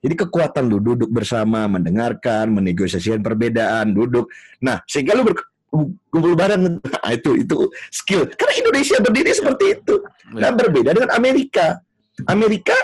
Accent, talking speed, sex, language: native, 125 wpm, male, Indonesian